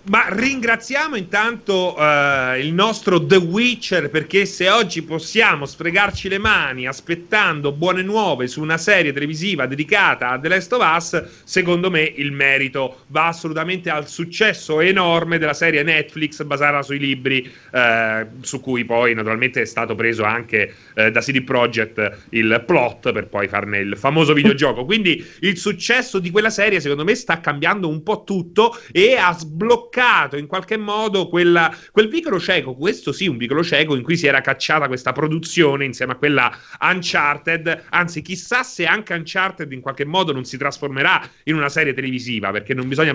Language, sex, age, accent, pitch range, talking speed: Italian, male, 30-49, native, 130-175 Hz, 170 wpm